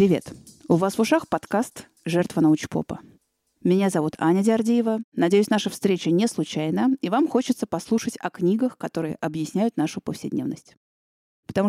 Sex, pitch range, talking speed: female, 165-215 Hz, 145 wpm